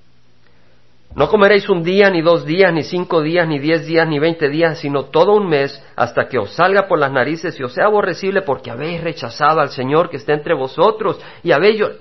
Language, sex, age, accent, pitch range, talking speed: Spanish, male, 50-69, Mexican, 150-220 Hz, 210 wpm